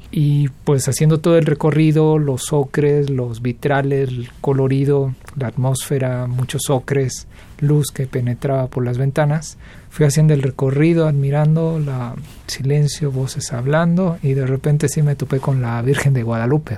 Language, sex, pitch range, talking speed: Spanish, male, 125-150 Hz, 150 wpm